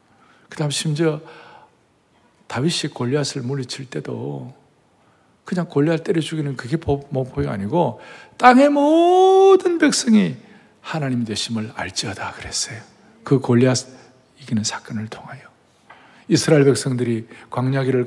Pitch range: 125-200 Hz